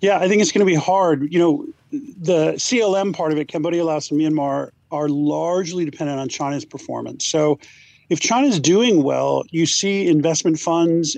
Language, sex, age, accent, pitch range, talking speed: English, male, 40-59, American, 145-175 Hz, 190 wpm